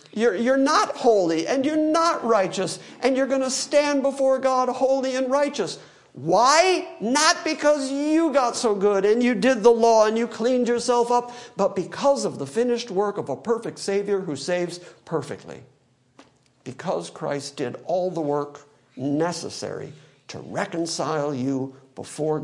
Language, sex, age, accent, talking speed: English, male, 50-69, American, 160 wpm